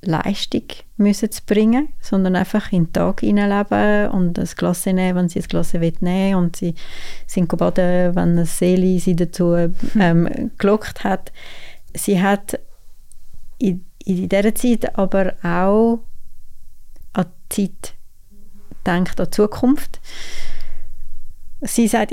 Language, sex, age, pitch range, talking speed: German, female, 30-49, 170-200 Hz, 130 wpm